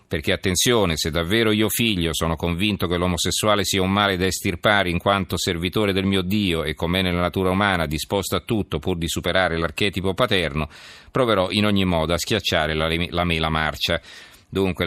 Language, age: Italian, 40-59